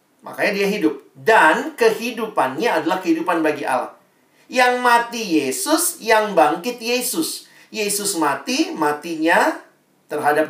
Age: 40-59